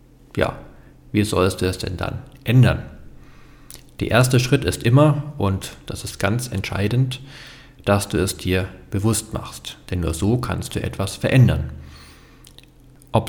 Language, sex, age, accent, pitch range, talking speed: German, male, 40-59, German, 95-125 Hz, 145 wpm